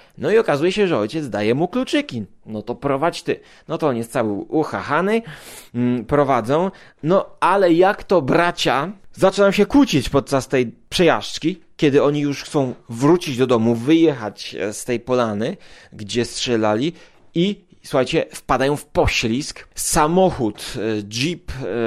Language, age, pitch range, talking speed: Polish, 30-49, 125-175 Hz, 140 wpm